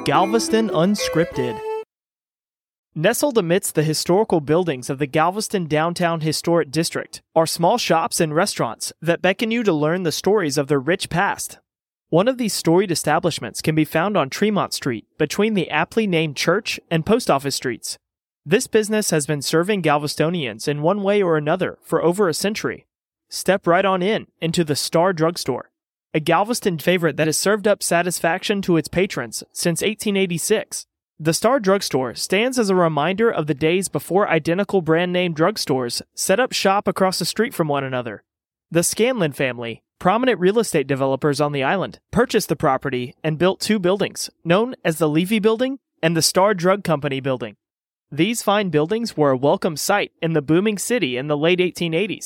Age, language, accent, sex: 30-49, English, American, male